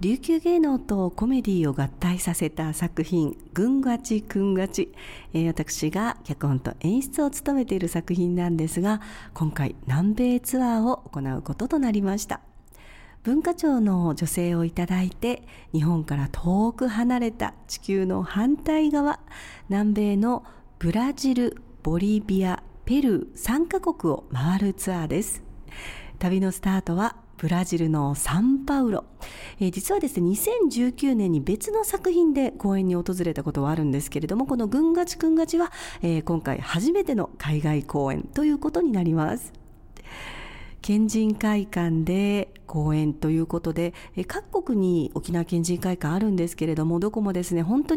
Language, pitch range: Japanese, 165-240 Hz